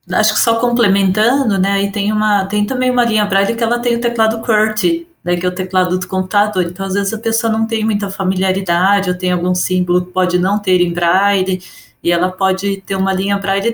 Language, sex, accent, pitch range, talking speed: Portuguese, female, Brazilian, 185-220 Hz, 225 wpm